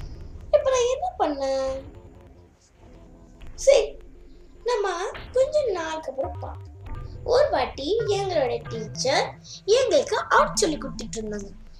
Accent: native